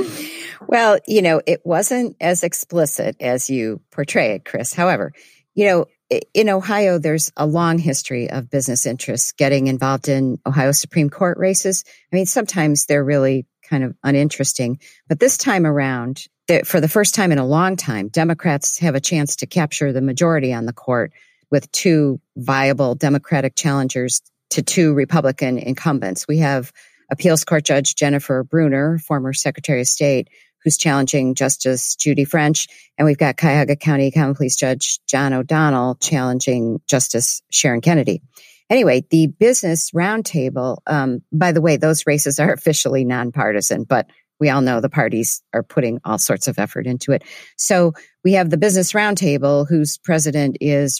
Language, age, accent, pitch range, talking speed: English, 50-69, American, 135-165 Hz, 160 wpm